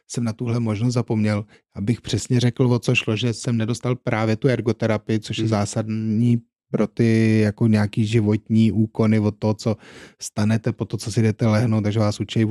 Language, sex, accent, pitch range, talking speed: Czech, male, native, 110-120 Hz, 185 wpm